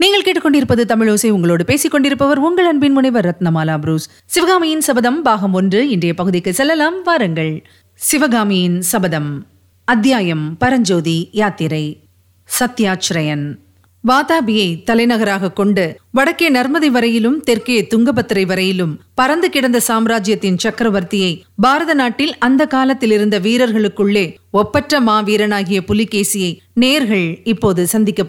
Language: Tamil